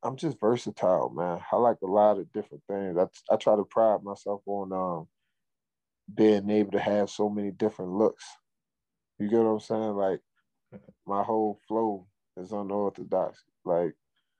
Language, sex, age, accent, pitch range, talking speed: English, male, 20-39, American, 100-110 Hz, 165 wpm